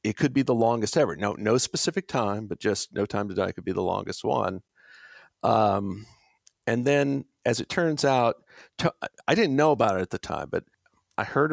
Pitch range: 100-140 Hz